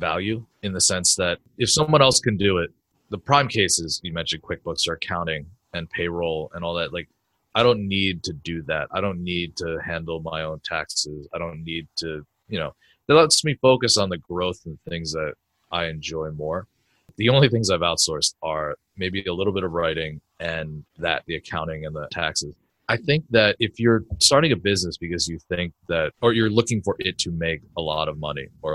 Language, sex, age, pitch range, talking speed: English, male, 30-49, 80-110 Hz, 210 wpm